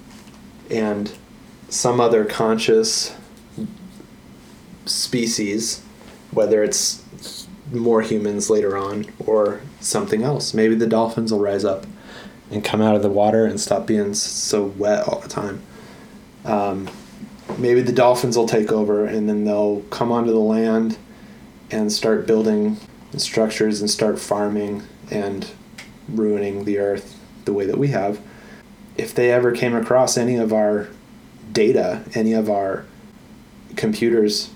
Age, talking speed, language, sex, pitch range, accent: 30-49, 135 wpm, English, male, 105-120 Hz, American